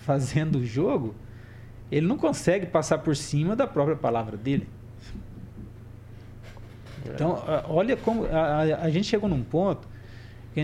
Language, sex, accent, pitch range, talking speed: Portuguese, male, Brazilian, 115-145 Hz, 135 wpm